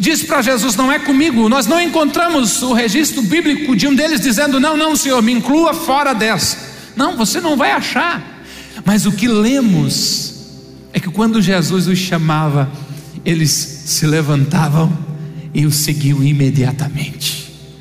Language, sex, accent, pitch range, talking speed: Portuguese, male, Brazilian, 180-265 Hz, 150 wpm